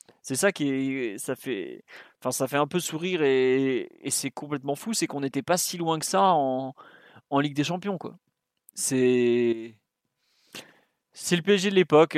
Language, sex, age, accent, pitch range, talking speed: French, male, 20-39, French, 130-155 Hz, 180 wpm